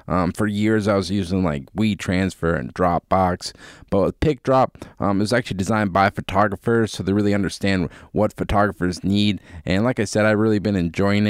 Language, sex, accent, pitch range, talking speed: English, male, American, 100-115 Hz, 185 wpm